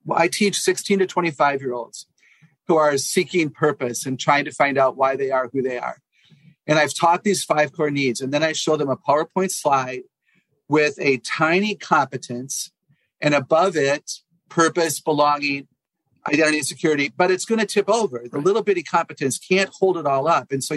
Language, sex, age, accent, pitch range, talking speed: English, male, 50-69, American, 145-185 Hz, 190 wpm